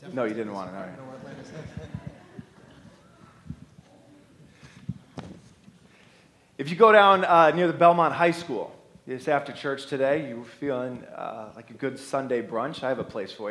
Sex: male